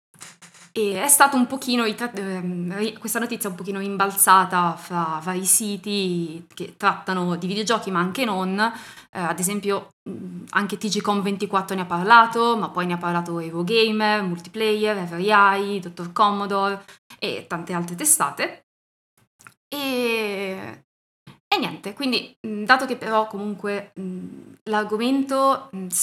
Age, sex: 20-39, female